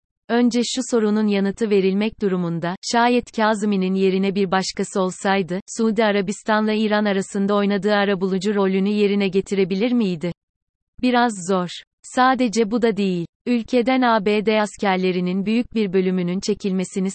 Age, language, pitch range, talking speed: 30-49, Turkish, 190-215 Hz, 125 wpm